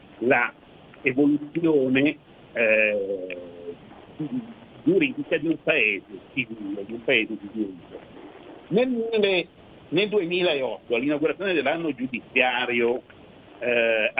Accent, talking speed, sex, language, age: native, 85 wpm, male, Italian, 60-79